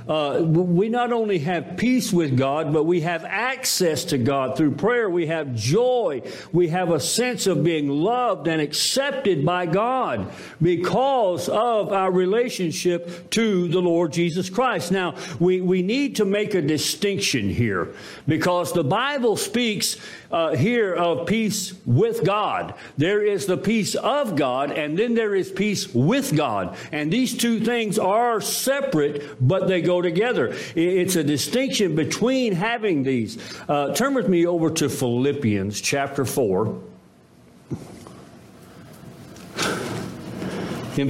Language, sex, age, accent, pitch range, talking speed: English, male, 60-79, American, 155-210 Hz, 140 wpm